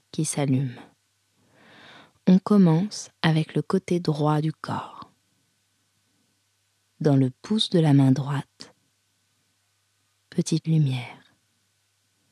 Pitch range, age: 100-160 Hz, 20-39